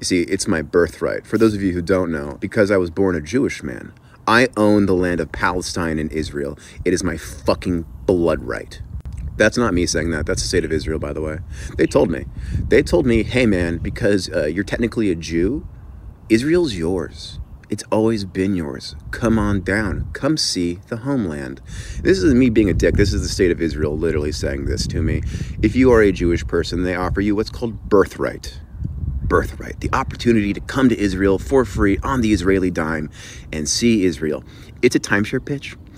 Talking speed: 200 wpm